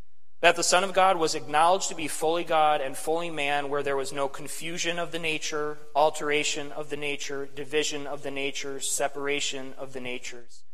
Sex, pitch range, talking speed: male, 110-145 Hz, 190 wpm